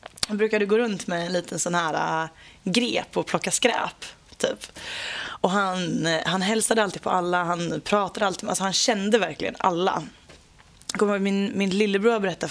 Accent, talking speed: native, 160 wpm